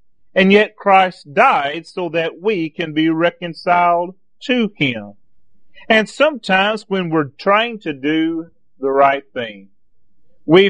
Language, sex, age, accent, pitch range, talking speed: English, male, 40-59, American, 140-190 Hz, 130 wpm